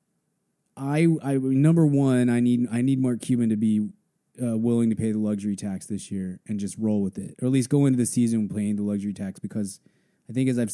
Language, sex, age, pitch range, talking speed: English, male, 20-39, 105-130 Hz, 235 wpm